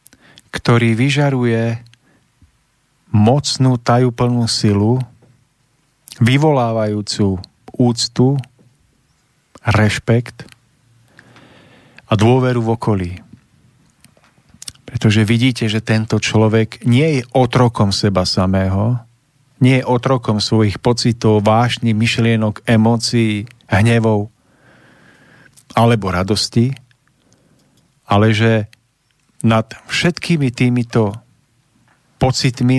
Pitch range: 110-130 Hz